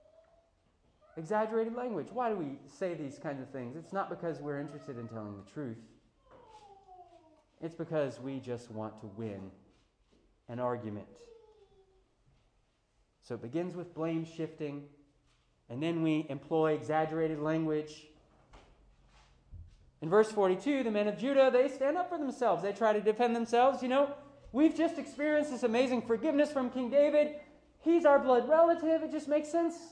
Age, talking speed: 30-49, 150 wpm